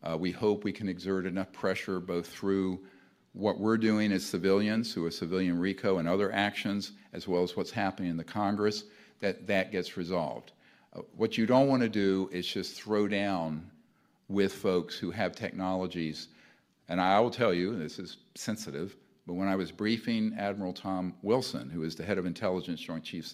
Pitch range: 85-100 Hz